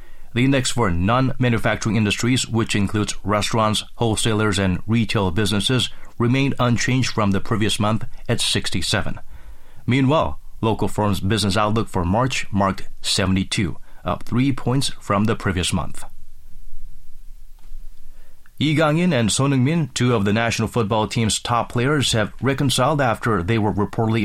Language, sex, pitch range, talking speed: English, male, 95-125 Hz, 135 wpm